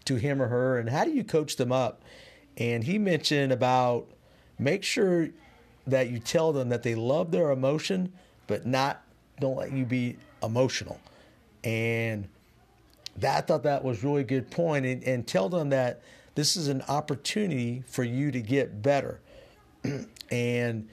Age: 50-69